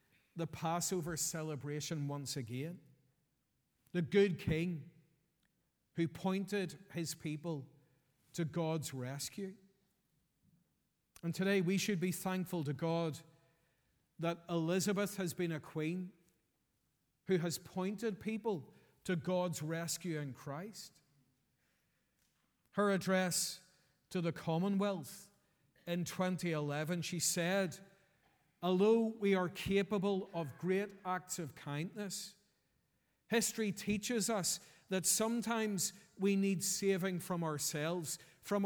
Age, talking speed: 40-59, 105 wpm